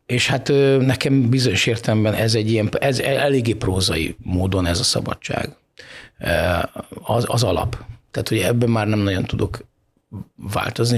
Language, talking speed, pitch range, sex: Hungarian, 140 wpm, 100-125 Hz, male